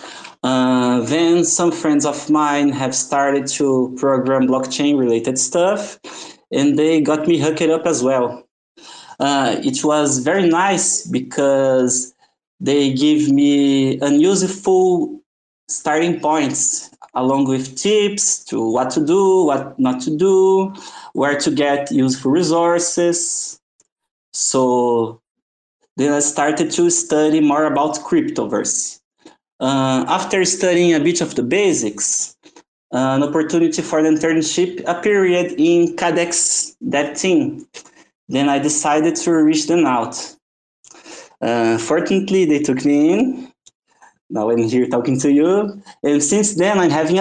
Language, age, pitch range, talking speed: English, 20-39, 135-185 Hz, 130 wpm